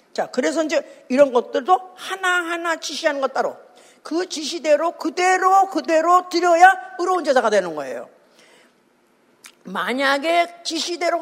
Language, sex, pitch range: Korean, female, 255-345 Hz